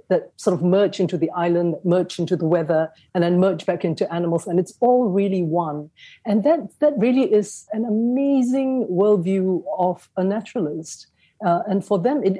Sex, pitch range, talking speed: female, 165-210 Hz, 185 wpm